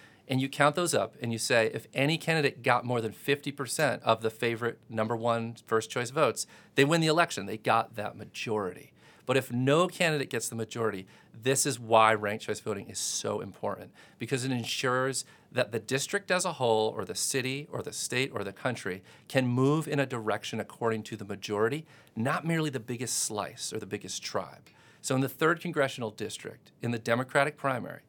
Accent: American